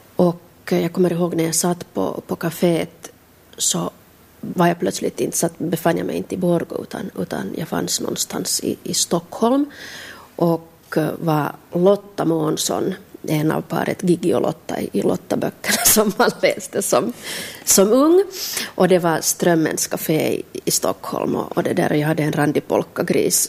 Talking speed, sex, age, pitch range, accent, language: 160 wpm, female, 30-49, 165-190 Hz, Finnish, Swedish